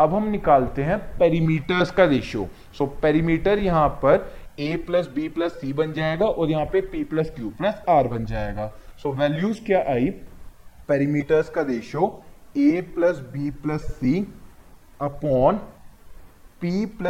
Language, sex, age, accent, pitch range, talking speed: Hindi, male, 20-39, native, 125-170 Hz, 80 wpm